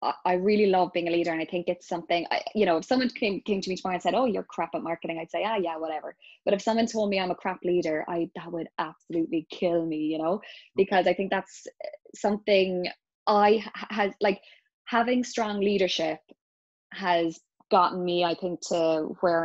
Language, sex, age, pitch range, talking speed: English, female, 20-39, 170-215 Hz, 215 wpm